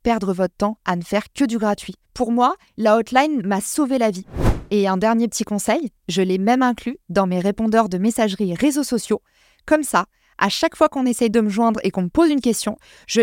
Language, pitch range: French, 185-230 Hz